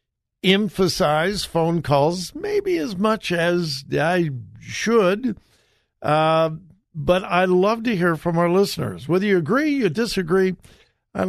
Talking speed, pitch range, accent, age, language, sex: 130 wpm, 150-195 Hz, American, 60-79, English, male